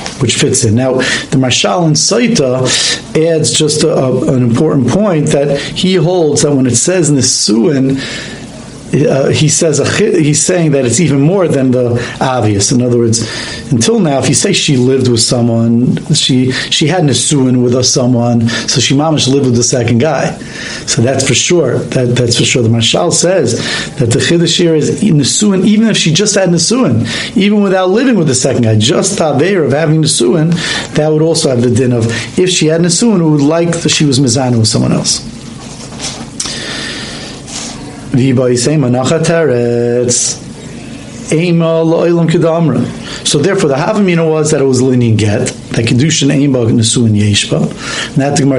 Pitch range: 120-160 Hz